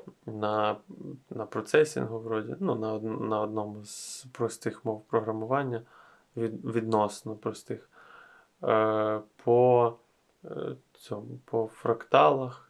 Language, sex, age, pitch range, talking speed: Ukrainian, male, 20-39, 115-125 Hz, 95 wpm